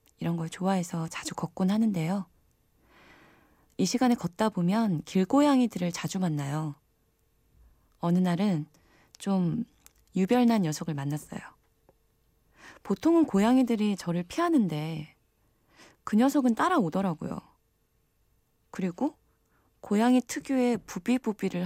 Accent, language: native, Korean